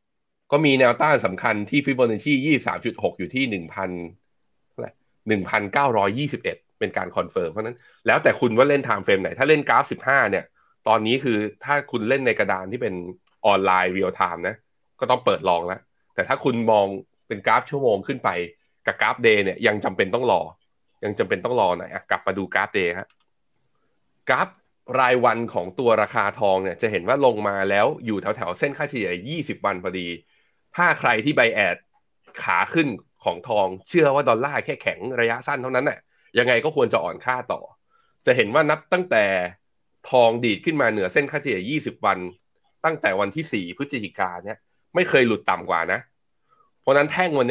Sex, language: male, Thai